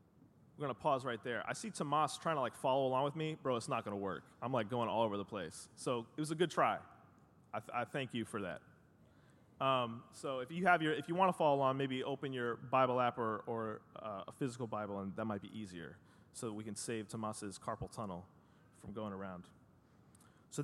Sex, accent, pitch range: male, American, 115-165 Hz